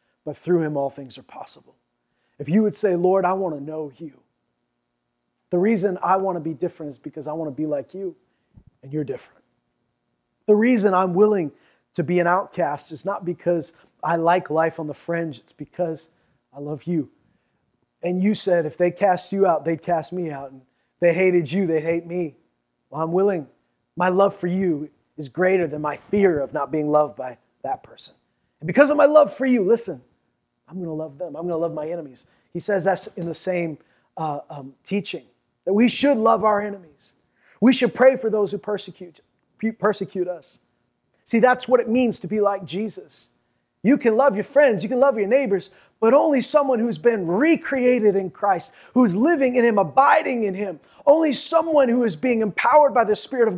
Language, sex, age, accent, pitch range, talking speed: English, male, 30-49, American, 160-225 Hz, 205 wpm